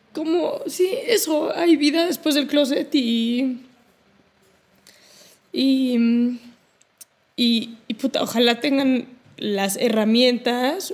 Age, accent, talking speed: 20-39, Spanish, 95 wpm